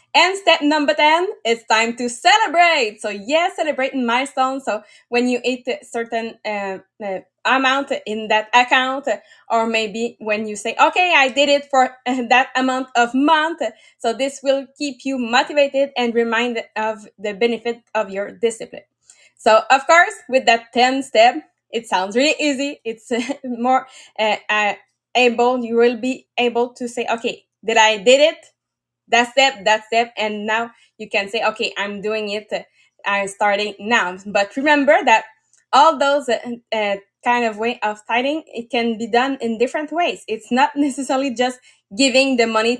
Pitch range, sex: 220-270 Hz, female